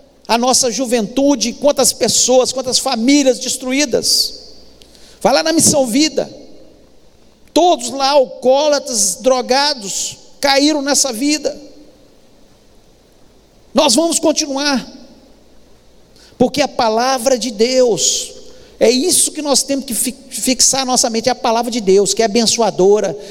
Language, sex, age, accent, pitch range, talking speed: Portuguese, male, 50-69, Brazilian, 235-285 Hz, 120 wpm